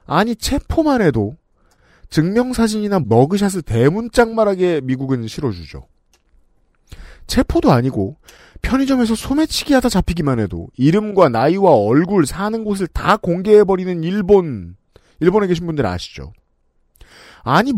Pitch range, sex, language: 120-205 Hz, male, Korean